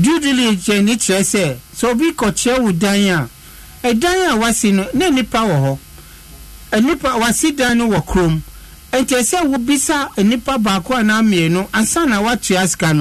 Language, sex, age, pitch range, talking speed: English, male, 60-79, 175-245 Hz, 140 wpm